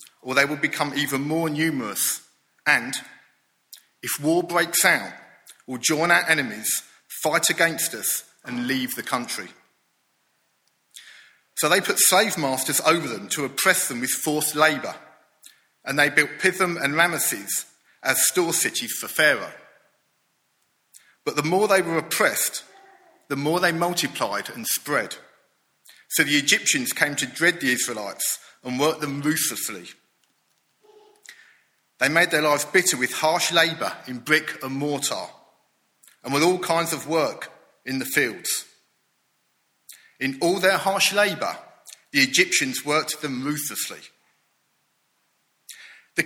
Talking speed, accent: 135 wpm, British